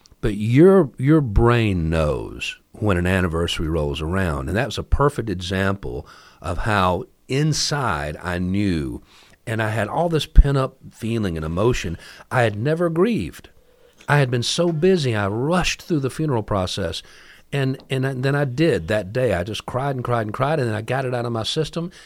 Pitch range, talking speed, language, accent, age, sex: 95-130 Hz, 185 wpm, English, American, 50-69, male